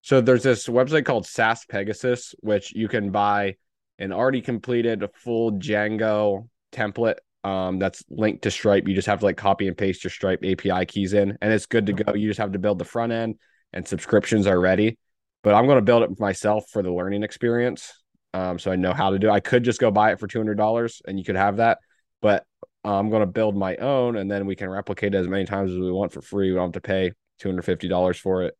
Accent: American